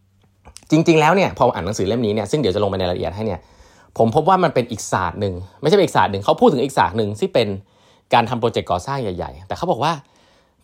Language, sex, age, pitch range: Thai, male, 20-39, 100-145 Hz